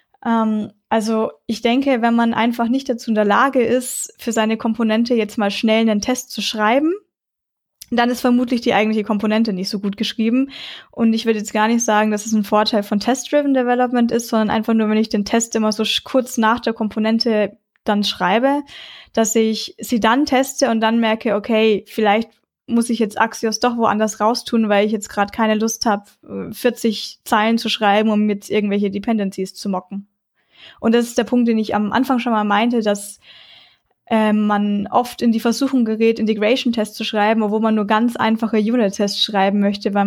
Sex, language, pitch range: female, German, 210-245 Hz